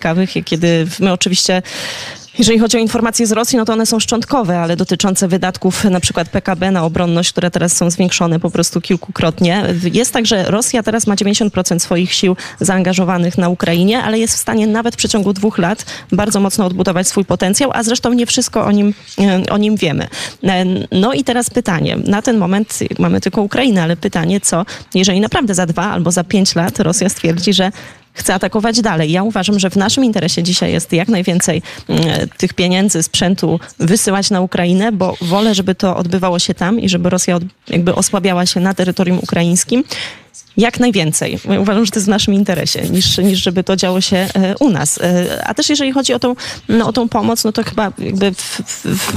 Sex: female